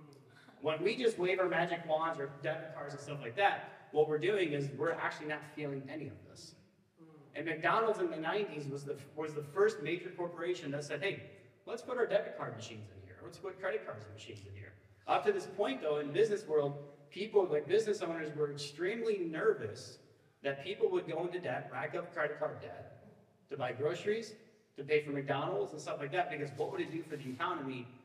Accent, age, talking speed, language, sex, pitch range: American, 30-49, 215 wpm, English, male, 130-170 Hz